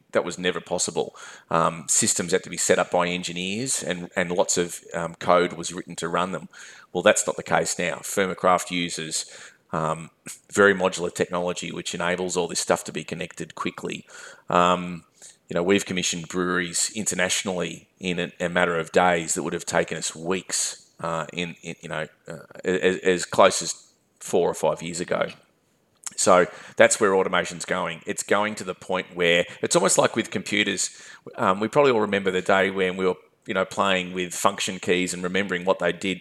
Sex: male